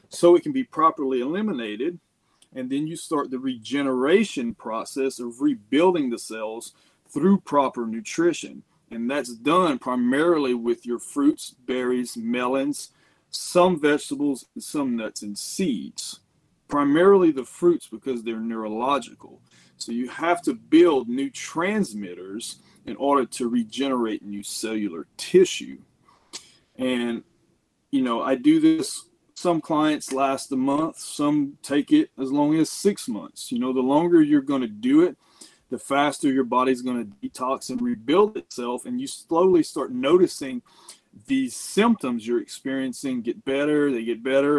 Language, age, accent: English, 40-59, American